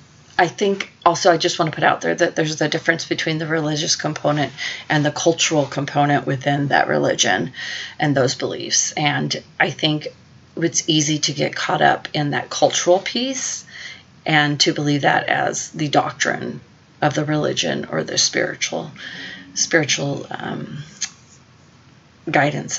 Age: 30-49